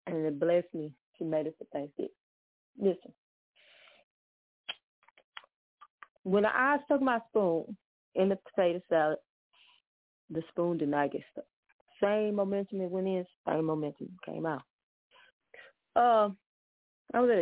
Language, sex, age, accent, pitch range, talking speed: English, female, 30-49, American, 170-255 Hz, 135 wpm